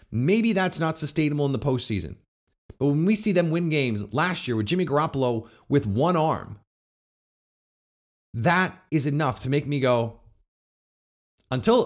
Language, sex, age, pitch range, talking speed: English, male, 30-49, 130-185 Hz, 150 wpm